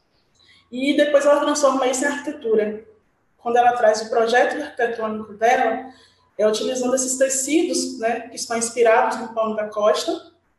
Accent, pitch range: Brazilian, 215-265 Hz